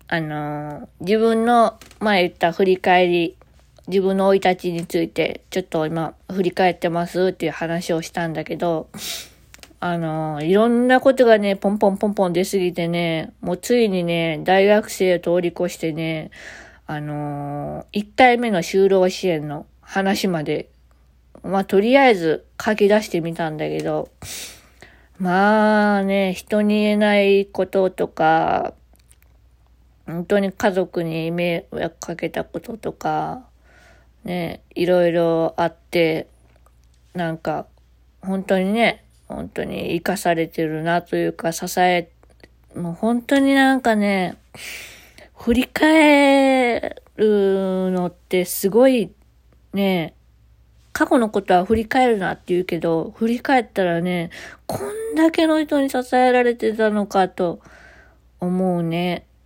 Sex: female